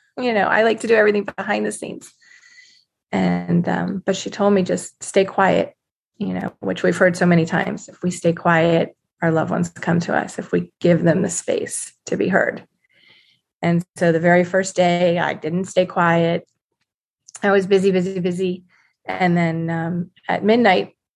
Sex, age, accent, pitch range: female, 30-49, American, 170-210 Hz